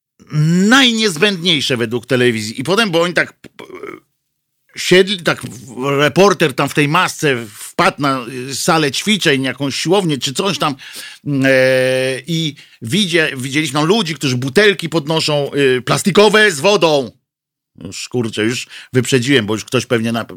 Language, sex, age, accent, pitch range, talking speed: Polish, male, 50-69, native, 135-195 Hz, 135 wpm